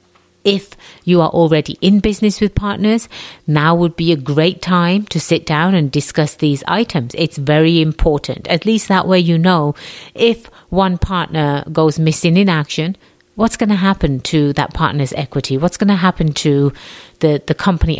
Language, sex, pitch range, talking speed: English, female, 150-185 Hz, 175 wpm